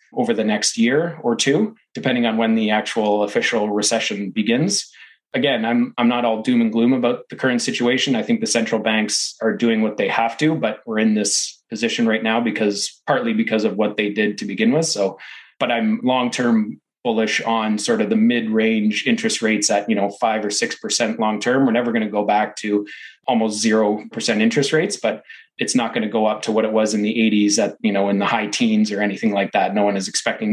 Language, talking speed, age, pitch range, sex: English, 230 wpm, 30-49, 105-135 Hz, male